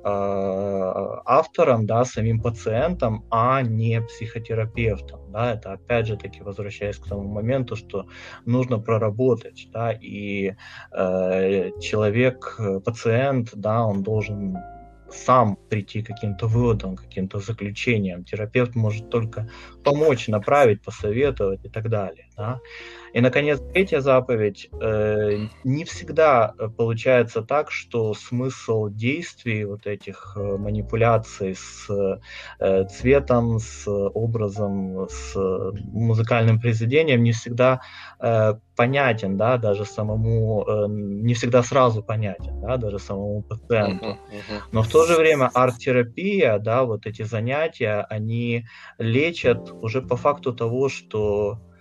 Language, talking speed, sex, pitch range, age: Russian, 120 wpm, male, 100-120 Hz, 20-39